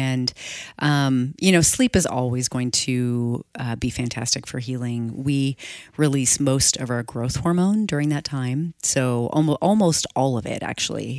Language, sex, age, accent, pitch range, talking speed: English, female, 30-49, American, 125-145 Hz, 165 wpm